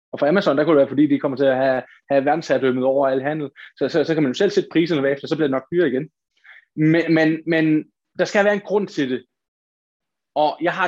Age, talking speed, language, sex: 20-39, 265 wpm, Danish, male